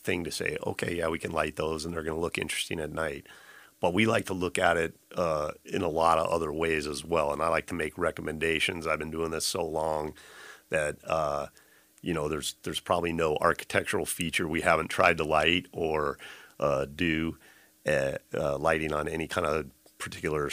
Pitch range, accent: 75-85 Hz, American